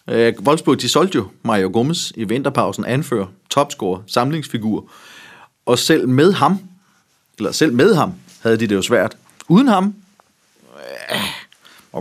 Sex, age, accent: male, 30-49, native